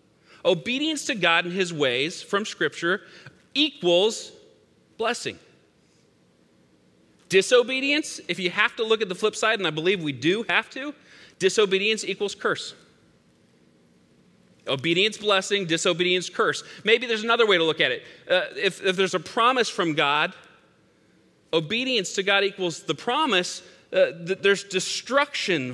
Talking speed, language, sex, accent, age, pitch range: 140 wpm, English, male, American, 30-49, 170-220 Hz